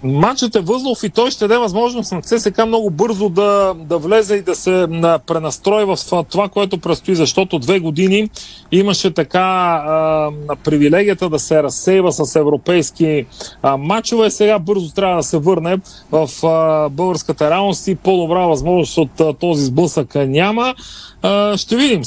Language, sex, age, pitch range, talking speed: Bulgarian, male, 40-59, 160-200 Hz, 155 wpm